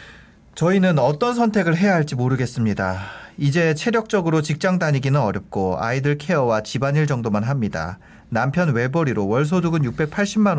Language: Korean